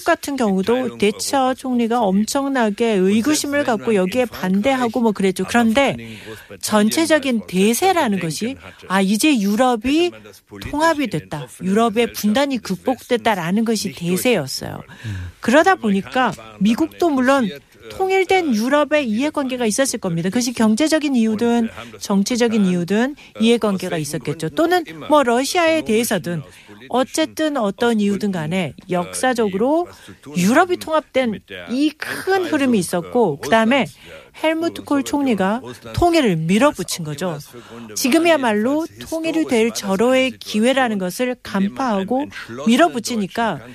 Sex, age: female, 40-59